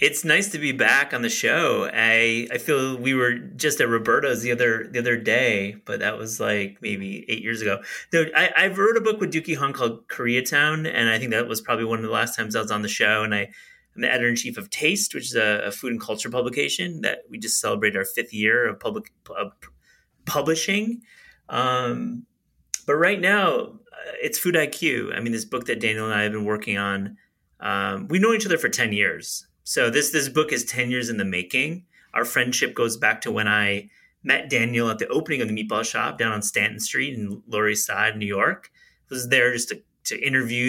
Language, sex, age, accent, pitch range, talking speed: English, male, 30-49, American, 105-145 Hz, 225 wpm